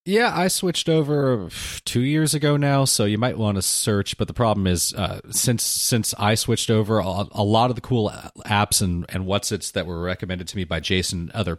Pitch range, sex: 90-120 Hz, male